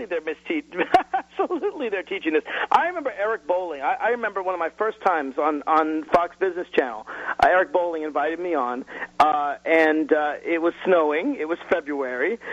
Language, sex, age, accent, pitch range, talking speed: English, male, 50-69, American, 155-225 Hz, 185 wpm